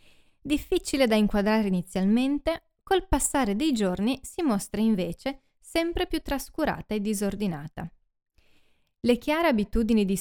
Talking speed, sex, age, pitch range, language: 120 wpm, female, 20-39, 185-260 Hz, Italian